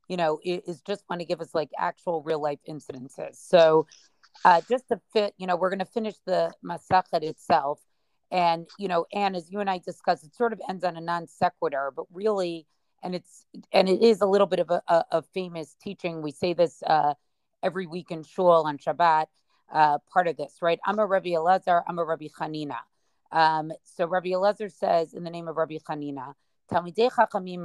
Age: 30-49